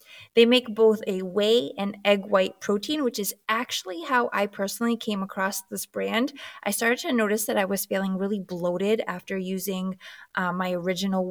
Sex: female